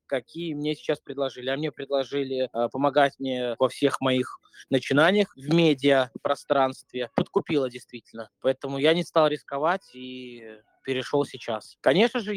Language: Russian